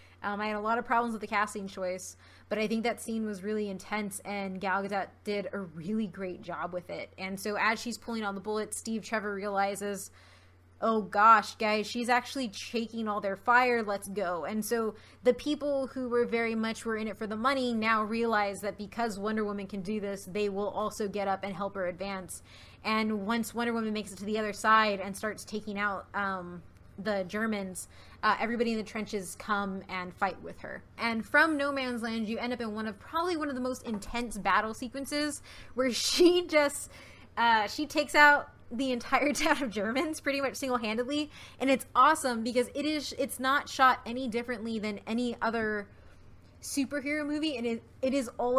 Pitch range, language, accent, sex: 205-255 Hz, English, American, female